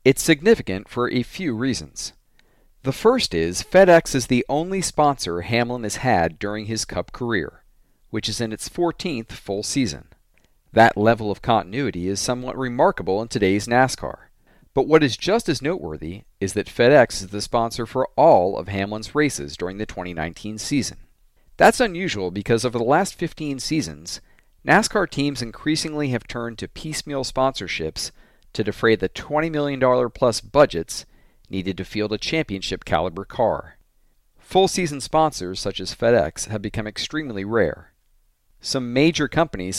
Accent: American